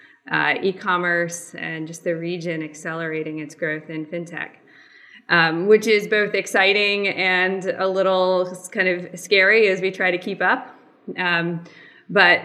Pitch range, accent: 170-195 Hz, American